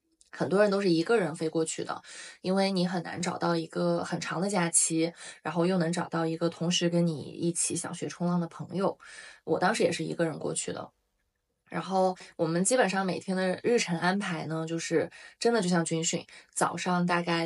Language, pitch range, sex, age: Chinese, 170-185 Hz, female, 20-39